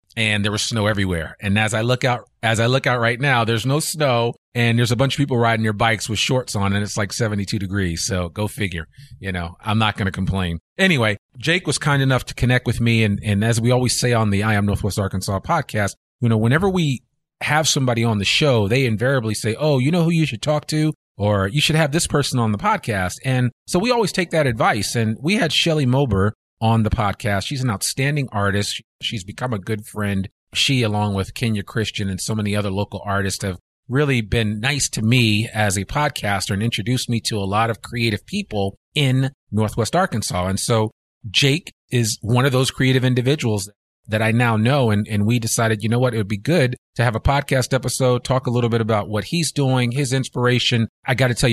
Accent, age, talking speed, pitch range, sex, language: American, 30-49, 230 wpm, 105-130 Hz, male, English